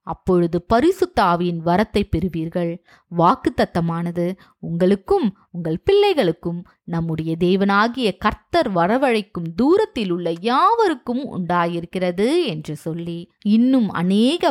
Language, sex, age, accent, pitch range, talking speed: Tamil, female, 20-39, native, 175-235 Hz, 85 wpm